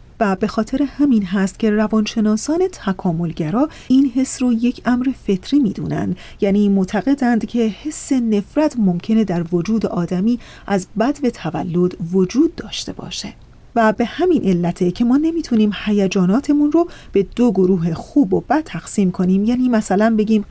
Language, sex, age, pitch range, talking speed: Persian, female, 40-59, 190-275 Hz, 150 wpm